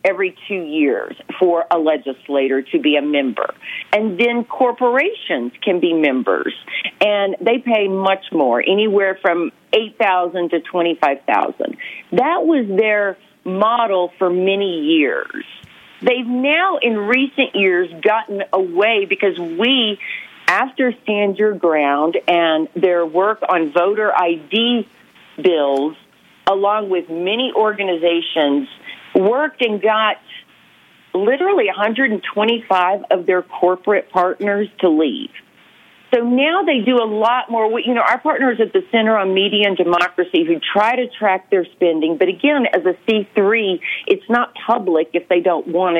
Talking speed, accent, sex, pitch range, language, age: 135 wpm, American, female, 180-240 Hz, English, 40-59